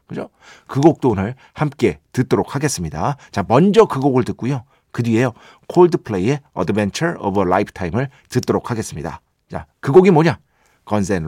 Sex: male